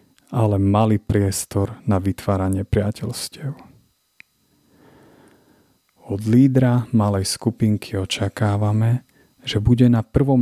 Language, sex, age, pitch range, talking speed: Slovak, male, 30-49, 100-120 Hz, 85 wpm